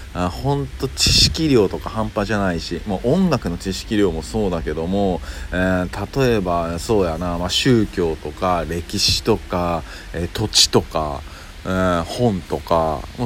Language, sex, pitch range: Japanese, male, 85-110 Hz